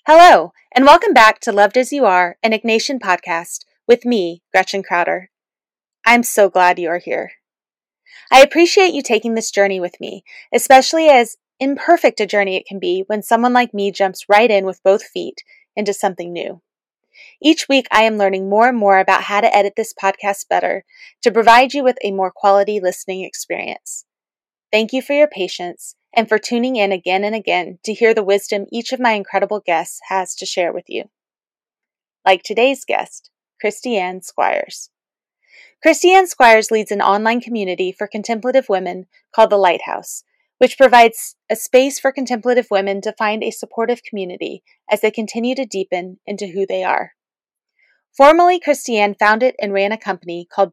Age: 20-39